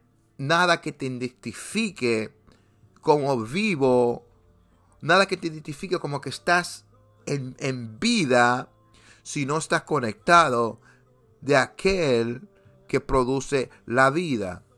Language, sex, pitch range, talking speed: Spanish, male, 120-155 Hz, 105 wpm